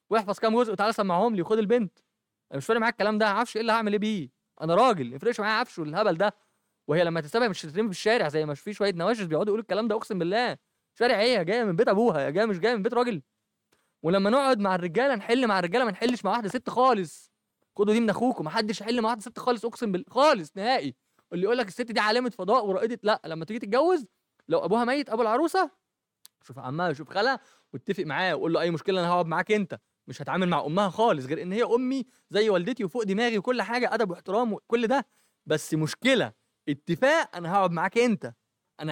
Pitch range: 180-235 Hz